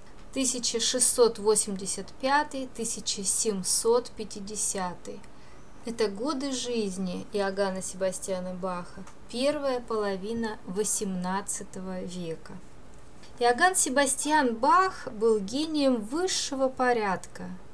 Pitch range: 195-255 Hz